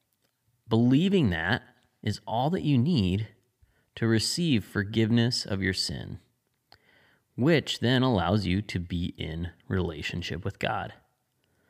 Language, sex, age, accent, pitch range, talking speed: English, male, 30-49, American, 100-125 Hz, 120 wpm